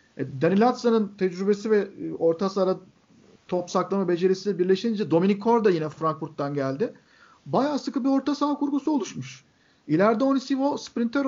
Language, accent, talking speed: Turkish, native, 135 wpm